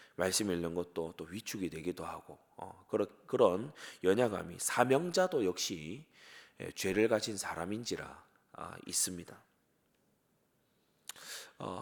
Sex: male